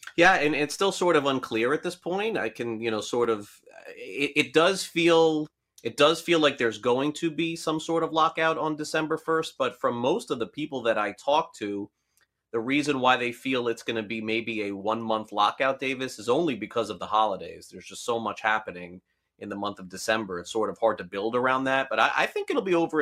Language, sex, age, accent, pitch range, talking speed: English, male, 30-49, American, 110-145 Hz, 235 wpm